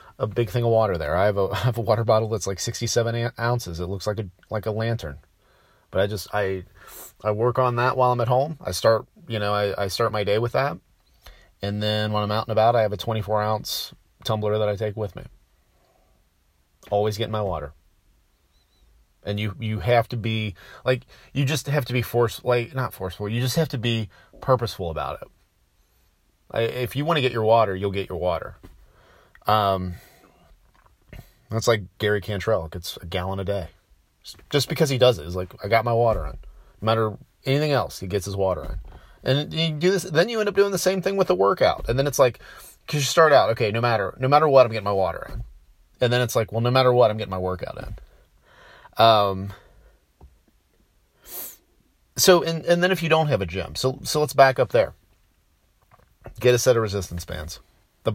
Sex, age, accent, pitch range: male, 30-49, American, 95-125 Hz